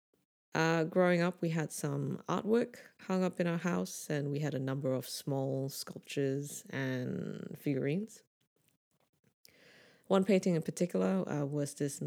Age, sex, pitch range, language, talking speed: 20-39, female, 145-180 Hz, English, 145 wpm